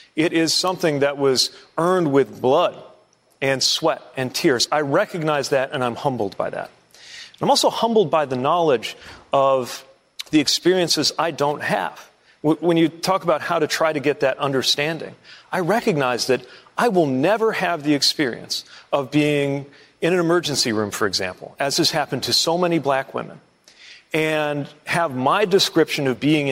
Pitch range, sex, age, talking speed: 145-190 Hz, male, 40-59, 165 wpm